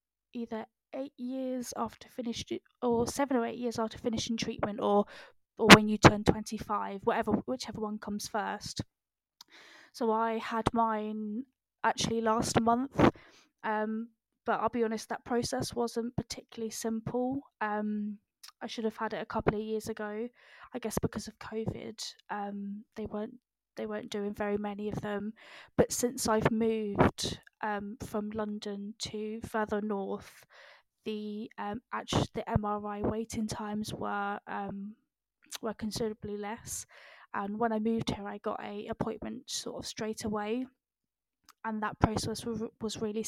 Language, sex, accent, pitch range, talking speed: English, female, British, 210-230 Hz, 150 wpm